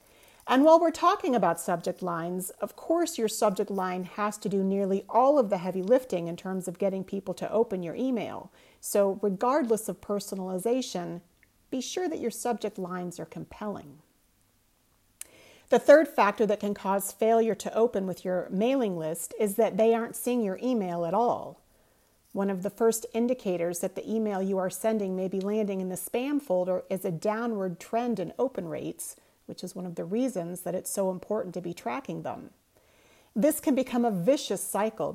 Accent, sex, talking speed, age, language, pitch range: American, female, 185 wpm, 40-59, English, 185-230 Hz